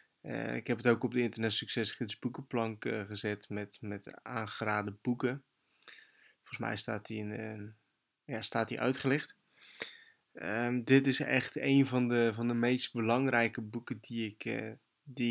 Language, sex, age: Dutch, male, 20-39